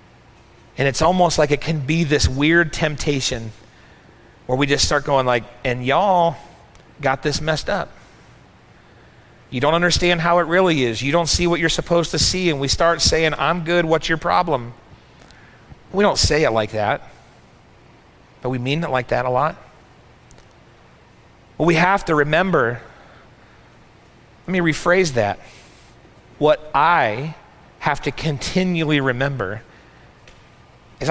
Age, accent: 40-59, American